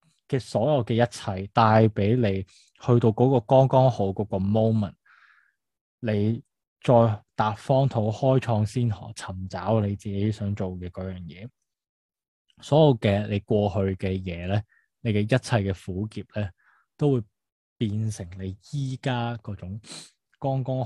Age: 20-39